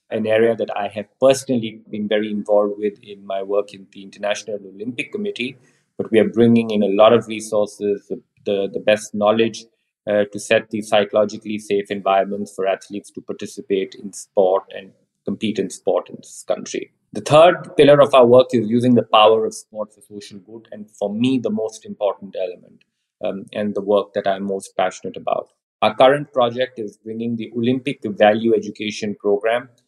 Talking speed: 185 wpm